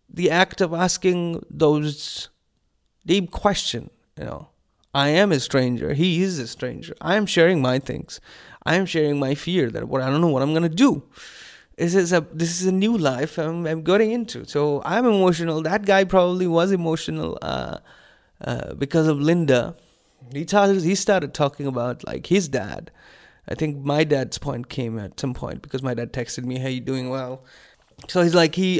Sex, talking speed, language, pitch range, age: male, 200 wpm, English, 130-170 Hz, 20-39